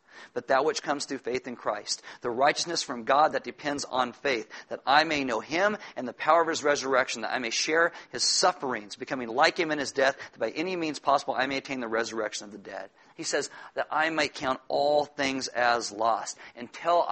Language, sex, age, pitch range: English, male, 40-59, 130-160 Hz